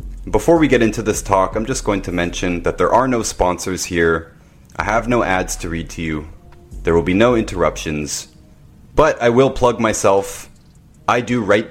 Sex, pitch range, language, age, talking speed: male, 85-110 Hz, English, 30-49, 195 wpm